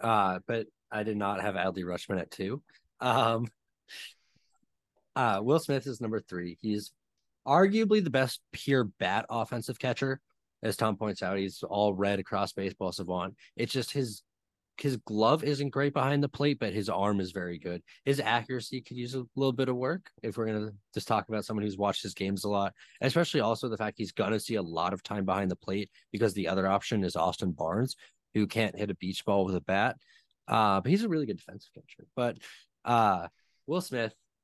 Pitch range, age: 95-115 Hz, 20-39